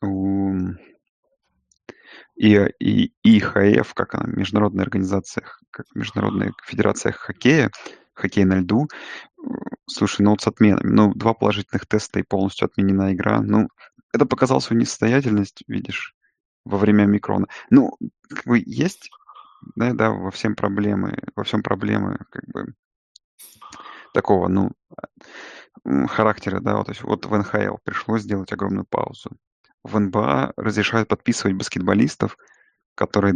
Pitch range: 100-110 Hz